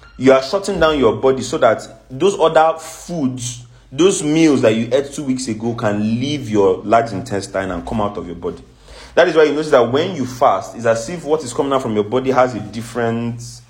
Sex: male